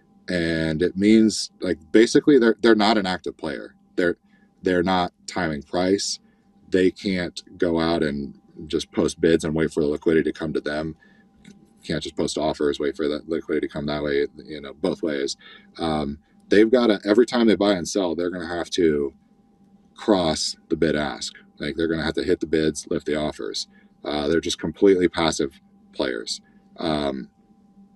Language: English